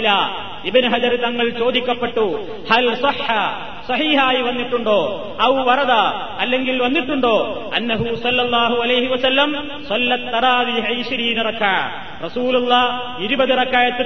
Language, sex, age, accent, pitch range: Malayalam, male, 30-49, native, 235-260 Hz